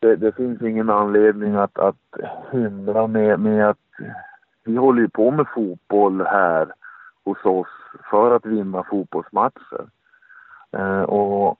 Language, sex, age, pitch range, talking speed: Swedish, male, 50-69, 95-130 Hz, 130 wpm